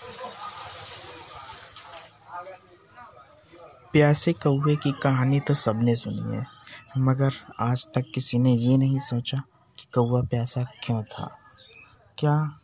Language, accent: Hindi, native